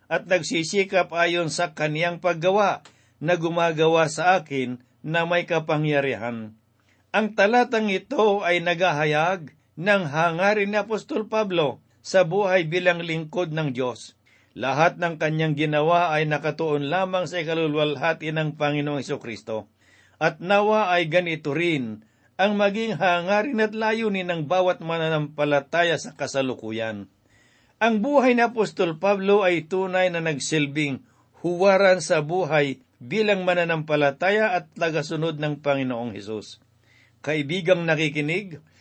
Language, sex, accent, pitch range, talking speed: Filipino, male, native, 145-190 Hz, 120 wpm